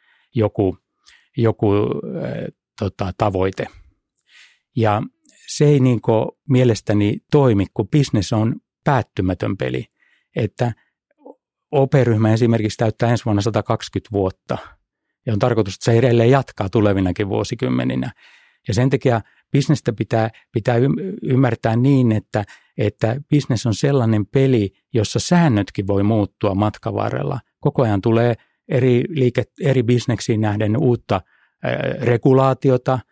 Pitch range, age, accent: 105-125 Hz, 60-79, native